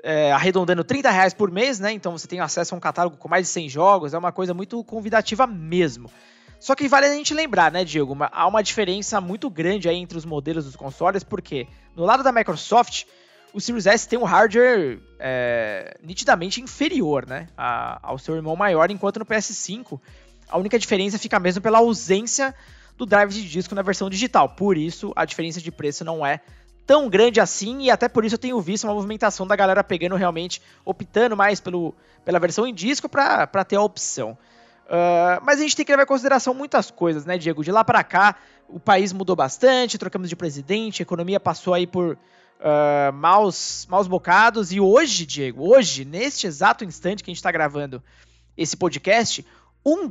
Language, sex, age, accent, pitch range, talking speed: Portuguese, male, 20-39, Brazilian, 170-225 Hz, 195 wpm